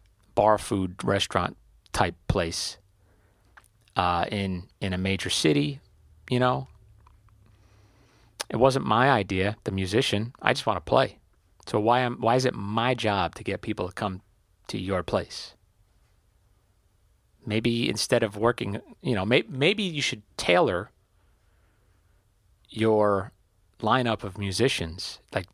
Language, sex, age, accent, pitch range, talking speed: English, male, 40-59, American, 95-110 Hz, 130 wpm